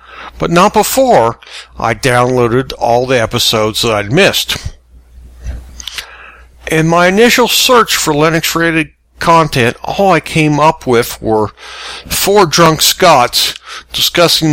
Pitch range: 110-155 Hz